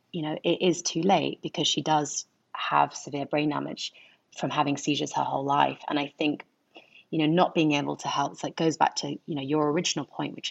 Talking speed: 215 wpm